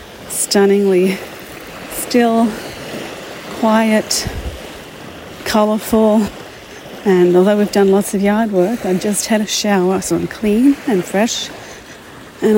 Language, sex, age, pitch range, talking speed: English, female, 40-59, 185-215 Hz, 110 wpm